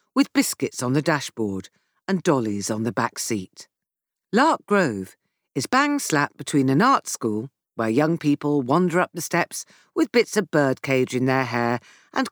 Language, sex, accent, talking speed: English, female, British, 165 wpm